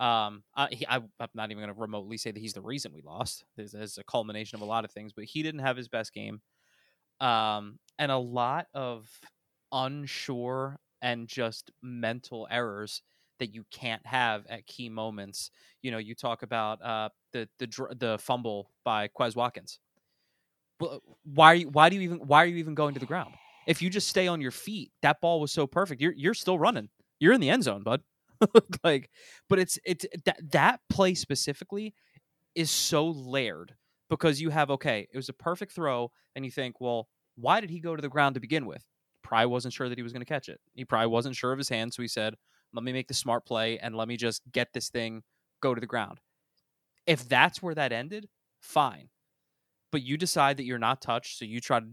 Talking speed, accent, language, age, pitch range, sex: 215 wpm, American, English, 20-39, 115-155 Hz, male